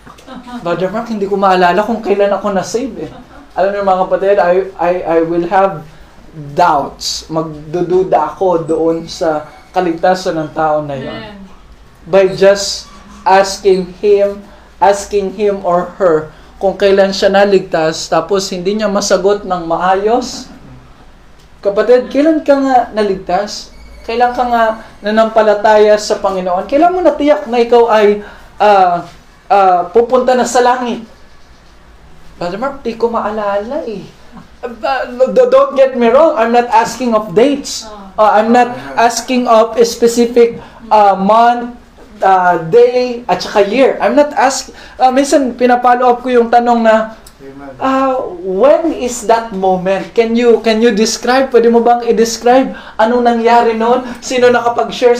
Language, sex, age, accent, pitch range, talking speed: Filipino, male, 20-39, native, 190-245 Hz, 140 wpm